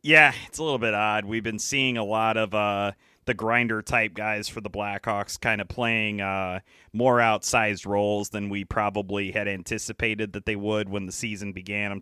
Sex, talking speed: male, 200 wpm